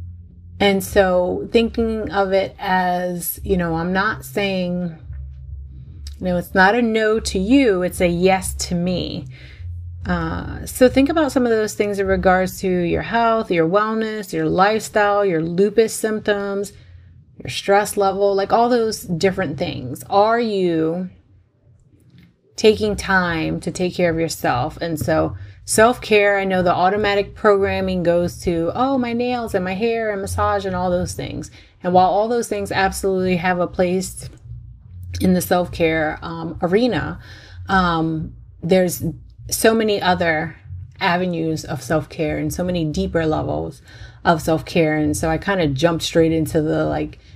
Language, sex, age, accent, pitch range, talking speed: English, female, 30-49, American, 150-200 Hz, 155 wpm